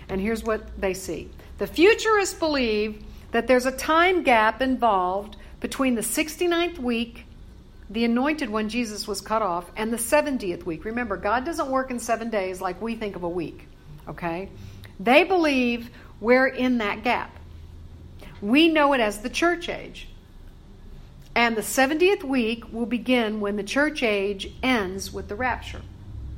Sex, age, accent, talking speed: female, 60-79, American, 160 wpm